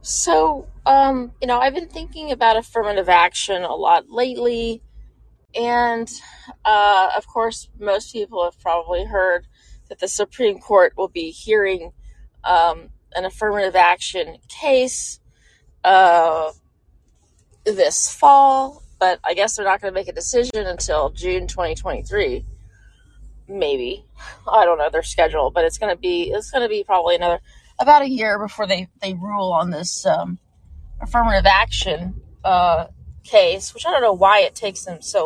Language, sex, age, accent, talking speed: English, female, 30-49, American, 155 wpm